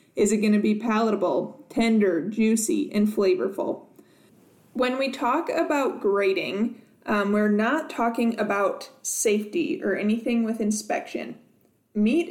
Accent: American